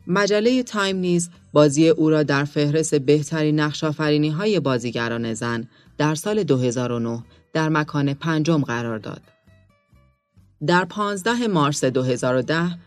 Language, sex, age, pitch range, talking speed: Persian, female, 30-49, 125-170 Hz, 110 wpm